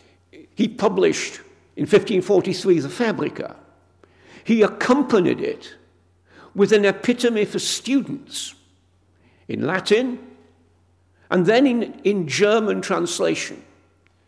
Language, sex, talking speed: English, male, 95 wpm